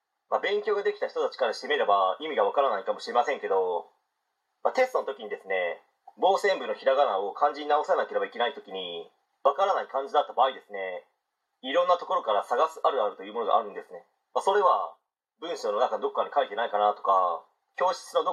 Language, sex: Japanese, male